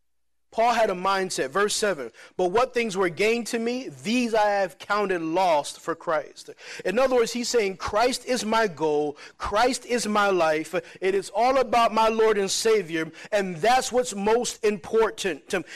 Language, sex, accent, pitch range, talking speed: English, male, American, 190-245 Hz, 185 wpm